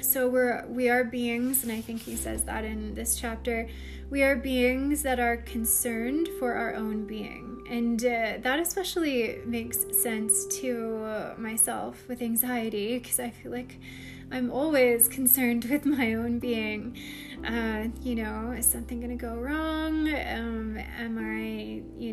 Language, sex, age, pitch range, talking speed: English, female, 20-39, 220-255 Hz, 155 wpm